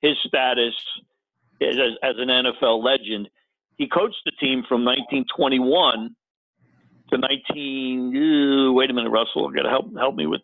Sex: male